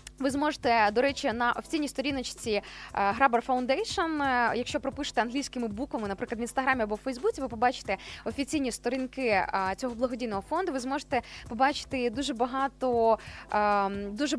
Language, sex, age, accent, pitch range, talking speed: Ukrainian, female, 20-39, native, 235-300 Hz, 130 wpm